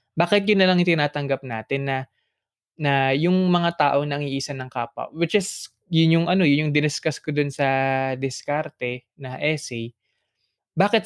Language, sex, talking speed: Filipino, male, 155 wpm